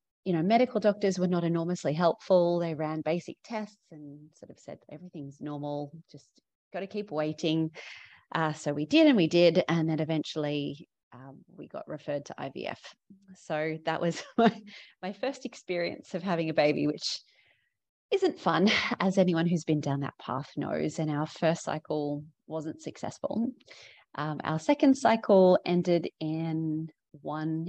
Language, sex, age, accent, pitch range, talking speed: English, female, 30-49, Australian, 150-190 Hz, 160 wpm